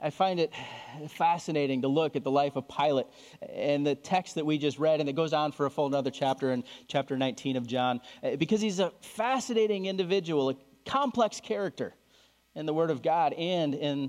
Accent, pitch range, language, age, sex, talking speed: American, 135-175 Hz, English, 30-49, male, 200 wpm